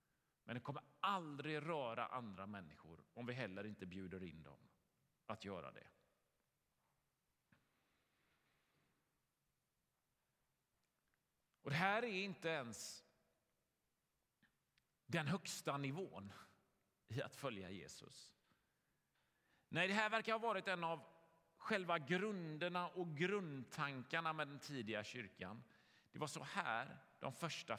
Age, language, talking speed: 40-59, Swedish, 110 wpm